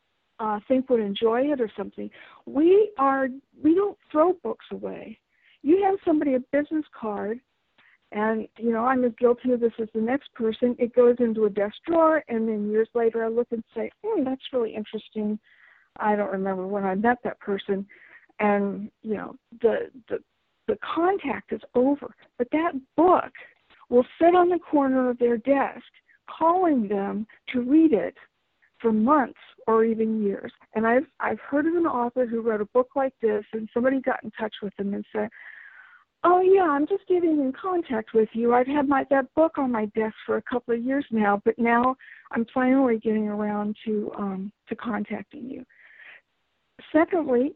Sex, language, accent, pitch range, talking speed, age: female, English, American, 220-290 Hz, 185 wpm, 60-79